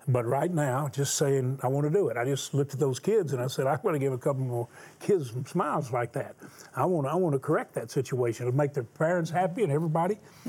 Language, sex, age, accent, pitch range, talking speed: English, male, 40-59, American, 130-165 Hz, 265 wpm